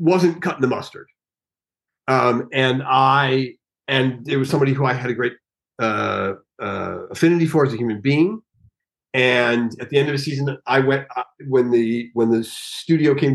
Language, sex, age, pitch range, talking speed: English, male, 40-59, 125-160 Hz, 180 wpm